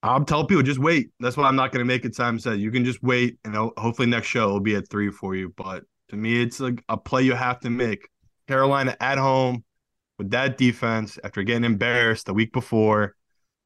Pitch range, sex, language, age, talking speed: 105-130 Hz, male, English, 20-39, 235 wpm